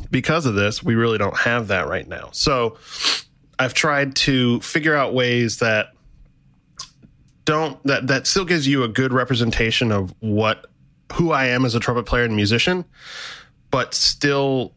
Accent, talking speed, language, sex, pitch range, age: American, 165 wpm, English, male, 105-135 Hz, 20-39